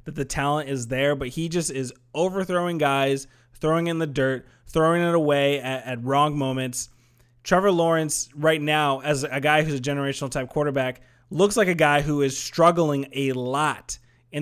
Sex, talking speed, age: male, 180 wpm, 20-39